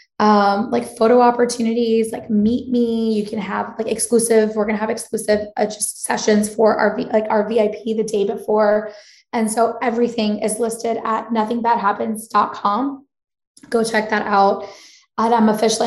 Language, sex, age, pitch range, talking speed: English, female, 10-29, 210-235 Hz, 160 wpm